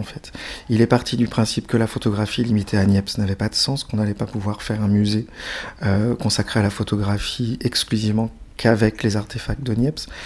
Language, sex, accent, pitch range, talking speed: French, male, French, 105-120 Hz, 205 wpm